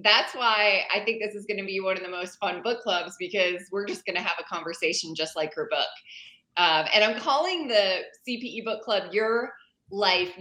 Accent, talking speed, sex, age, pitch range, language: American, 220 wpm, female, 20-39, 200-250 Hz, English